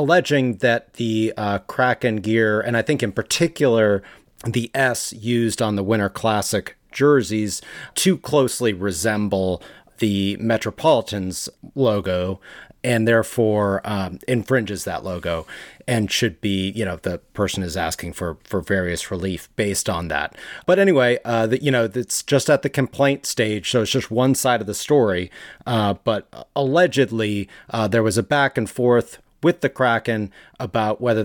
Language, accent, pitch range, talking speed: English, American, 100-125 Hz, 155 wpm